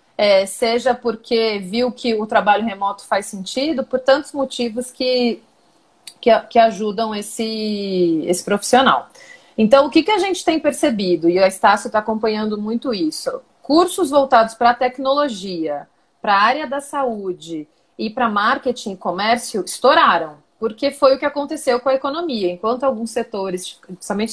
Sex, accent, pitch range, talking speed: female, Brazilian, 205-255 Hz, 155 wpm